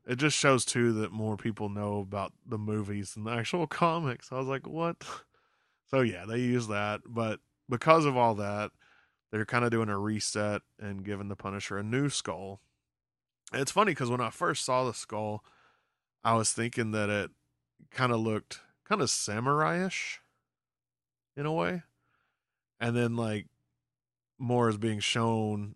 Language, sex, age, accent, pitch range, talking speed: English, male, 20-39, American, 100-125 Hz, 170 wpm